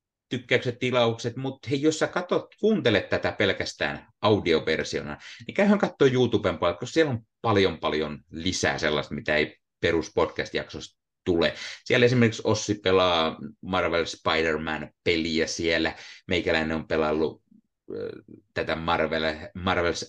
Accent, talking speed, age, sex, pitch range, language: native, 115 wpm, 30-49, male, 80-120 Hz, Finnish